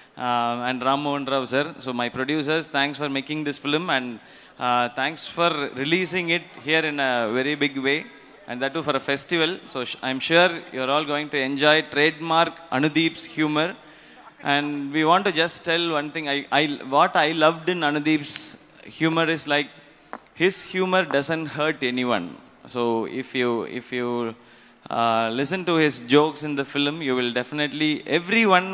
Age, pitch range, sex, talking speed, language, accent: 20-39, 130-160 Hz, male, 175 wpm, Telugu, native